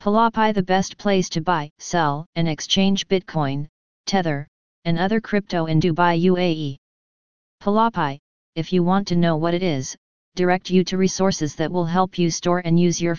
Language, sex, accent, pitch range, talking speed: English, female, American, 165-195 Hz, 175 wpm